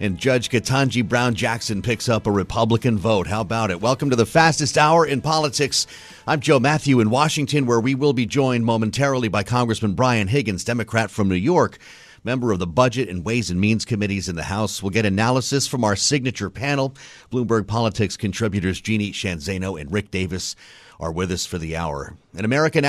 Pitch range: 100-135 Hz